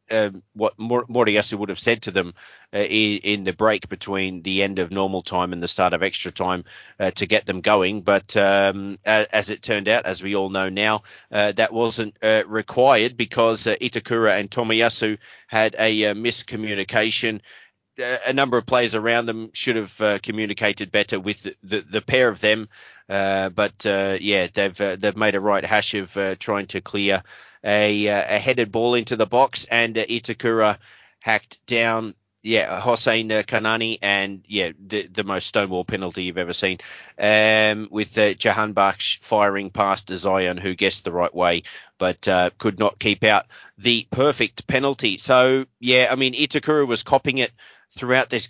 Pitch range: 100-115 Hz